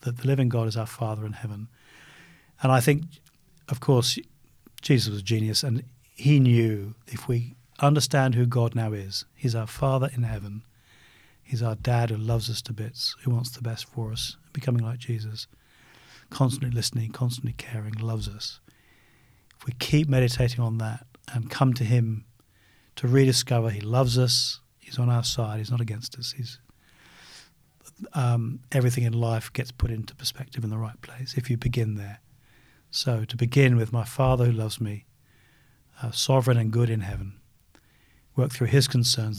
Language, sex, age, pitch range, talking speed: English, male, 40-59, 110-125 Hz, 175 wpm